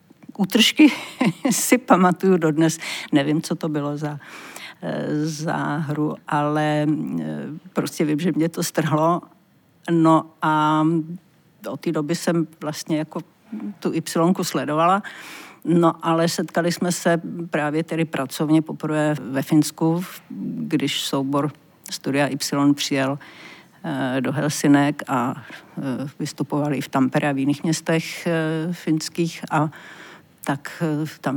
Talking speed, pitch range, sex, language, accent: 115 wpm, 150-165 Hz, female, Czech, native